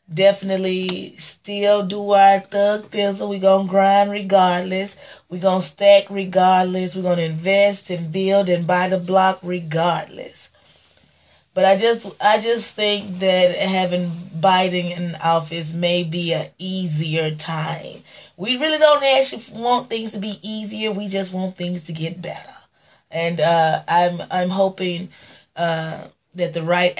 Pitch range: 165-195 Hz